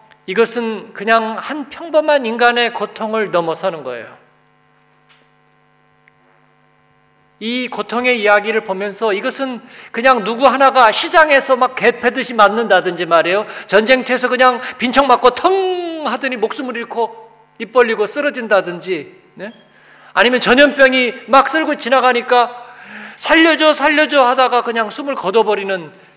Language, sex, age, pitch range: Korean, male, 40-59, 195-255 Hz